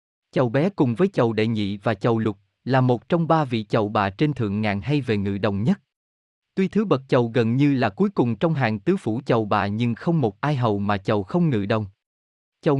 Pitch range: 105-150 Hz